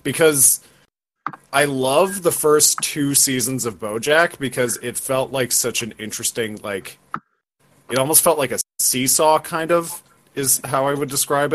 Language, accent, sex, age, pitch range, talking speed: English, American, male, 30-49, 105-130 Hz, 155 wpm